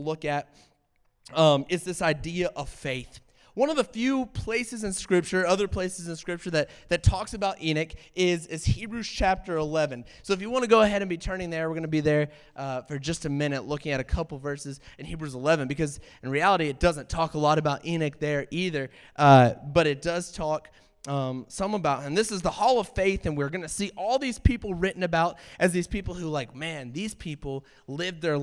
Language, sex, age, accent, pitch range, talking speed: English, male, 20-39, American, 145-195 Hz, 220 wpm